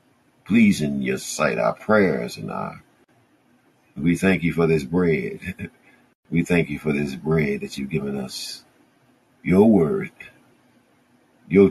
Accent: American